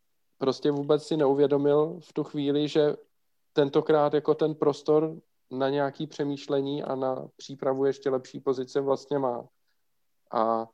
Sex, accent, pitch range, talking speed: male, native, 130-145 Hz, 135 wpm